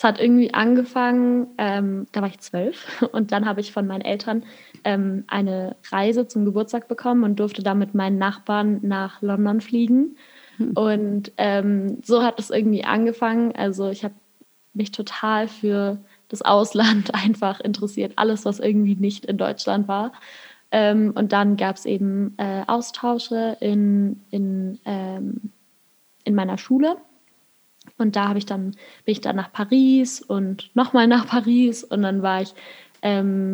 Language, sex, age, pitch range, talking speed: German, female, 20-39, 200-235 Hz, 150 wpm